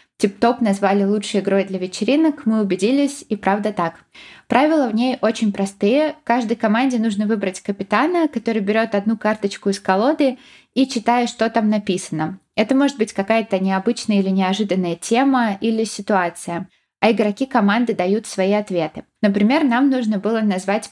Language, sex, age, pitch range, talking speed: Russian, female, 20-39, 195-235 Hz, 150 wpm